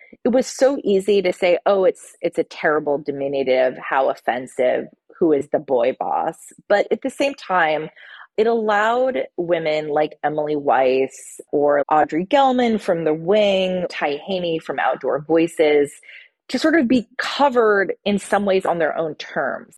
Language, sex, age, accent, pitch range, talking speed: English, female, 30-49, American, 145-210 Hz, 160 wpm